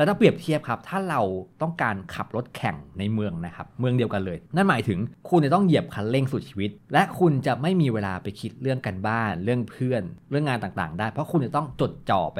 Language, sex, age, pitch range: Thai, male, 20-39, 100-135 Hz